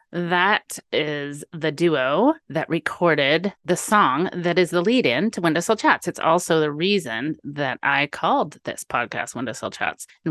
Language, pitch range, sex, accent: English, 150-190 Hz, female, American